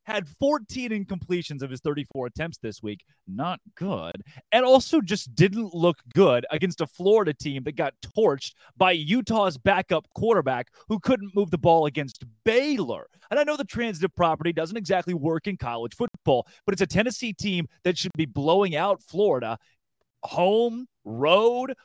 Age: 30-49